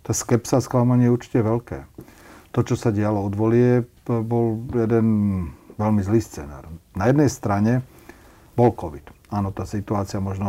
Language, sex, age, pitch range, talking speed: Slovak, male, 40-59, 100-115 Hz, 150 wpm